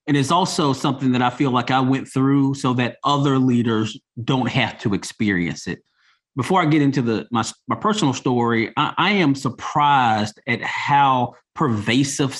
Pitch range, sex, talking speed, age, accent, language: 115-145 Hz, male, 175 wpm, 30-49, American, English